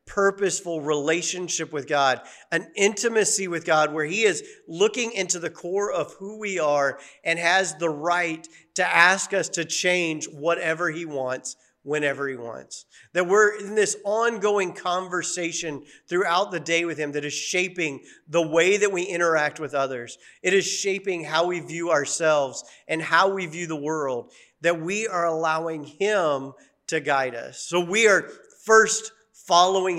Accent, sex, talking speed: American, male, 160 wpm